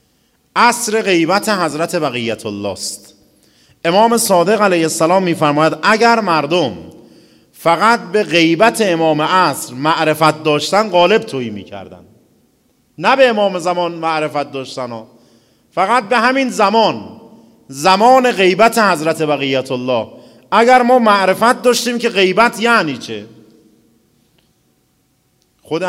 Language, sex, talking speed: Persian, male, 110 wpm